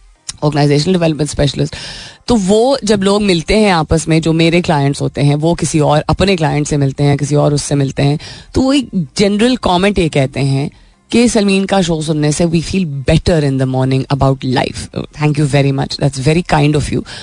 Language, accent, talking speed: Hindi, native, 210 wpm